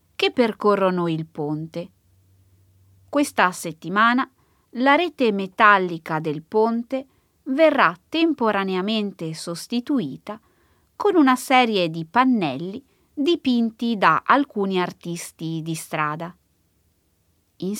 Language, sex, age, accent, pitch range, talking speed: Italian, female, 20-39, native, 170-255 Hz, 90 wpm